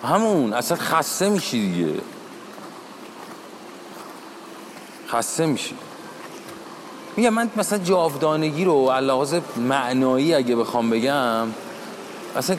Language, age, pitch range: Persian, 30-49, 125-170 Hz